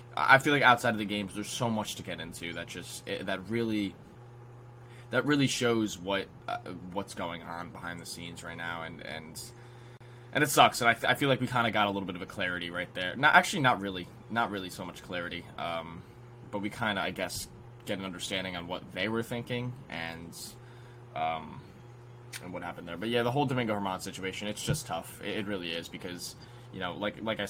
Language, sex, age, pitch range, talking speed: English, male, 10-29, 95-120 Hz, 225 wpm